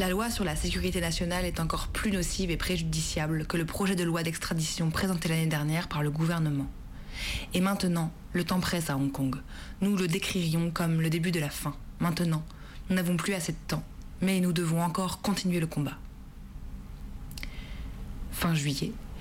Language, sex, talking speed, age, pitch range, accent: French, female, 180 wpm, 20-39, 150-185 Hz, French